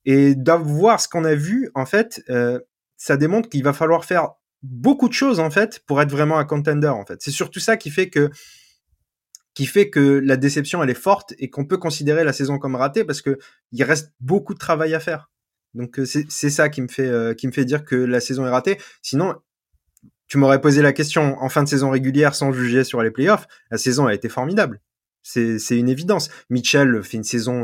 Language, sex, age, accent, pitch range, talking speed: French, male, 20-39, French, 120-155 Hz, 225 wpm